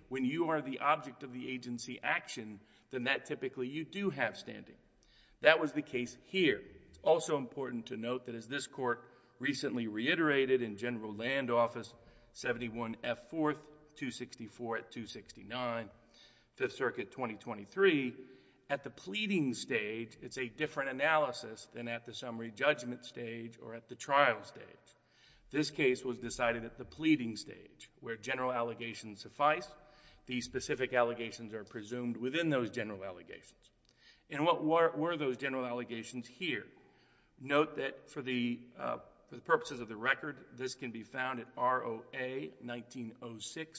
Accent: American